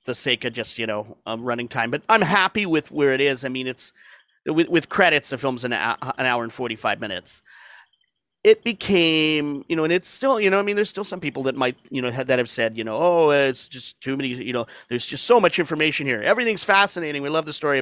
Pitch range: 125-175 Hz